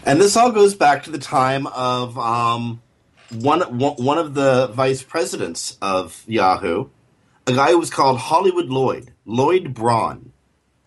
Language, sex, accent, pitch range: English, male, American, 105-135 Hz